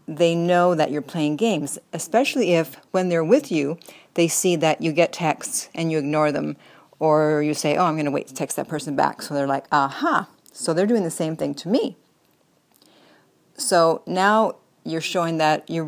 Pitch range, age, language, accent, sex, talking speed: 155-200 Hz, 40-59, English, American, female, 205 wpm